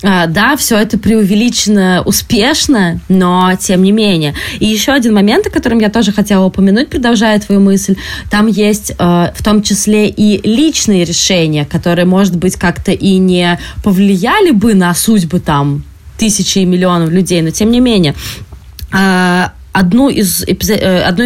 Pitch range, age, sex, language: 180-225 Hz, 20-39, female, Russian